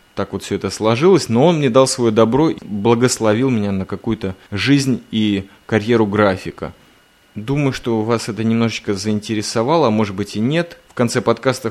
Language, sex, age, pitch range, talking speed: Russian, male, 20-39, 105-140 Hz, 170 wpm